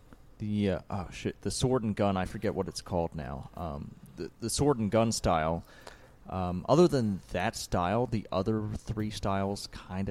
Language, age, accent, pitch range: English, 30-49, American, 95-115 Hz